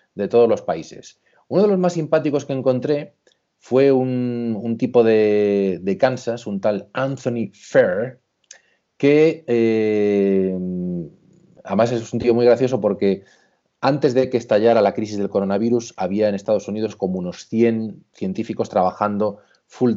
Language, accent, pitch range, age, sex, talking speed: Spanish, Spanish, 100-130 Hz, 30-49, male, 145 wpm